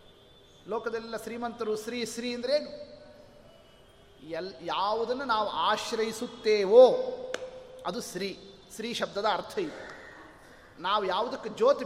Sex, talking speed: male, 90 wpm